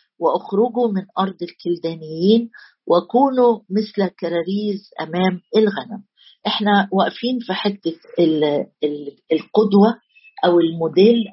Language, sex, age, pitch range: Arabic, female, 50-69, 170-220 Hz